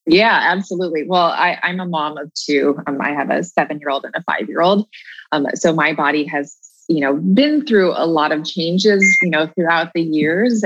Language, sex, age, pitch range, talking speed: English, female, 20-39, 155-200 Hz, 220 wpm